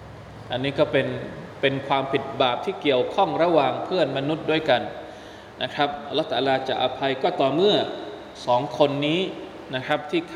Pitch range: 135-170 Hz